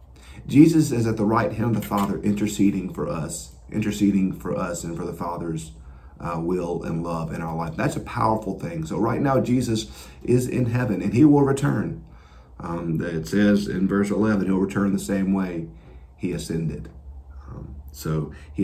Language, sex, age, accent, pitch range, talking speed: English, male, 40-59, American, 70-105 Hz, 185 wpm